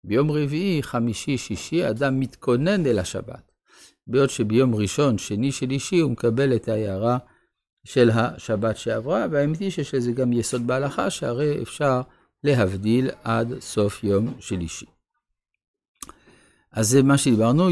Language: Hebrew